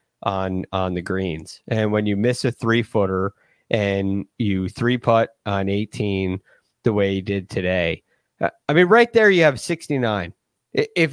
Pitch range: 105-145 Hz